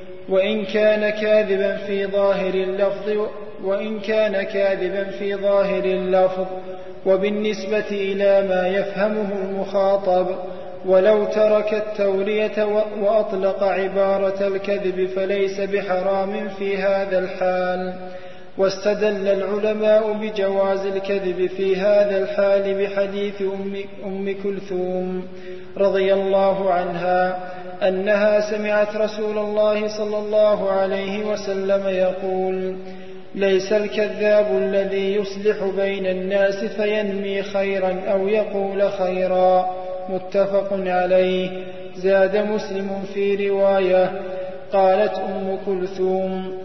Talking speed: 85 wpm